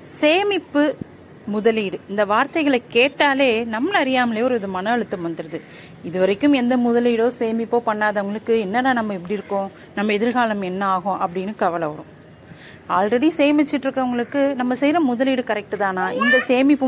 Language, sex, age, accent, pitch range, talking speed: Tamil, female, 30-49, native, 190-260 Hz, 135 wpm